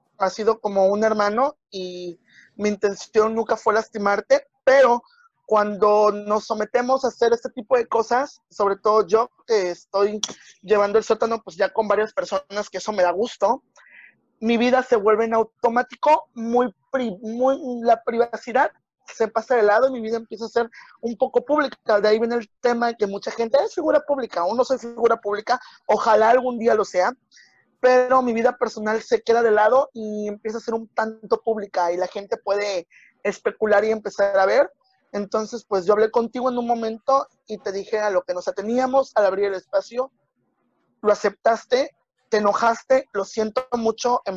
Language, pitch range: Spanish, 205-245 Hz